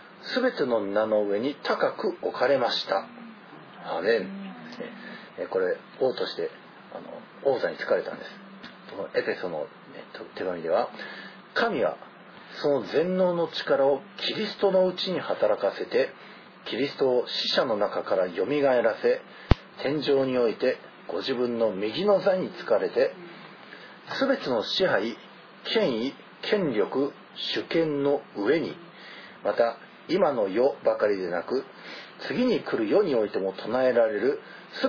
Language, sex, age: Japanese, male, 40-59